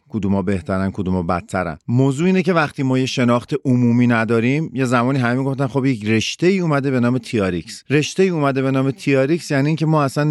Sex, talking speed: male, 205 wpm